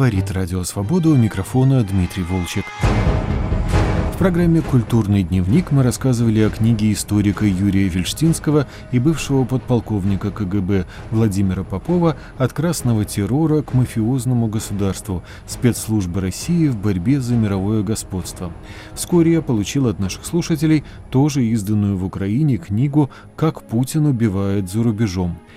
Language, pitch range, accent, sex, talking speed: Russian, 100-135 Hz, native, male, 120 wpm